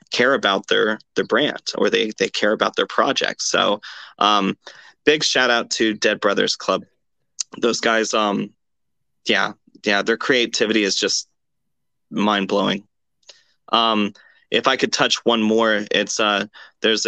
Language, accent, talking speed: English, American, 150 wpm